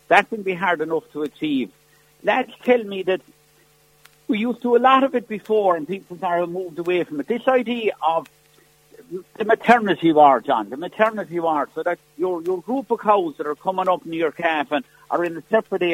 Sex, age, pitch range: male, 60-79, 155-220 Hz